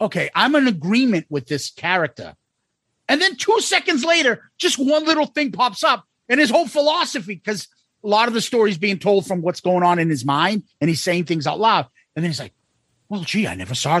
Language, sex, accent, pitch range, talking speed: English, male, American, 185-290 Hz, 225 wpm